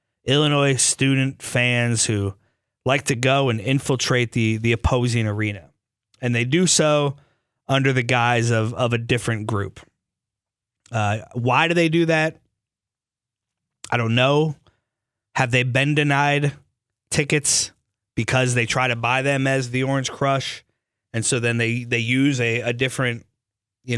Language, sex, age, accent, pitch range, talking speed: English, male, 30-49, American, 115-140 Hz, 150 wpm